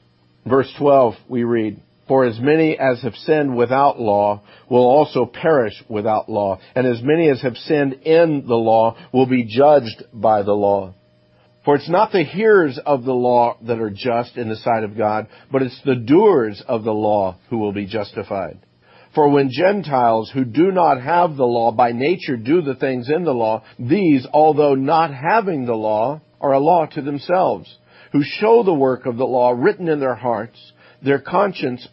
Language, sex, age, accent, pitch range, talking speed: English, male, 50-69, American, 110-140 Hz, 190 wpm